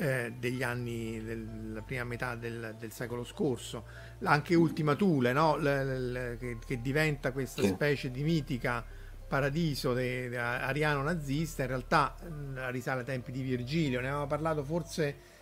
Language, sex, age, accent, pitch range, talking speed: Italian, male, 50-69, native, 125-160 Hz, 150 wpm